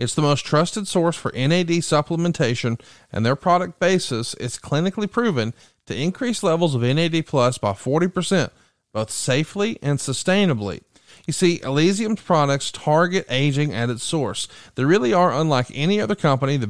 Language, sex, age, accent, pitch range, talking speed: English, male, 40-59, American, 130-170 Hz, 160 wpm